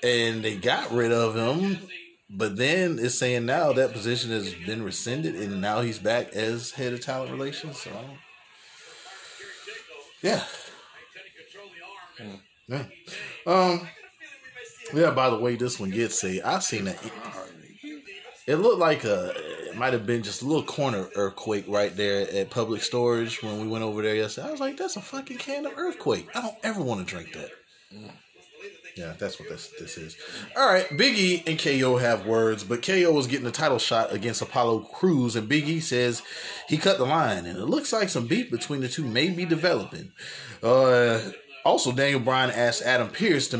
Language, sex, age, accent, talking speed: English, male, 20-39, American, 180 wpm